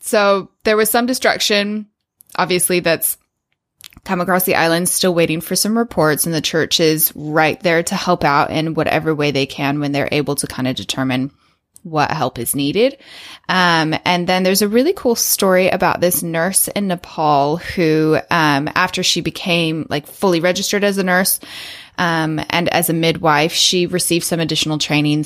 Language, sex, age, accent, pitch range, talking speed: English, female, 20-39, American, 145-180 Hz, 180 wpm